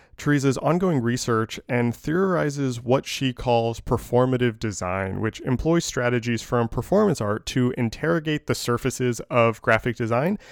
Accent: American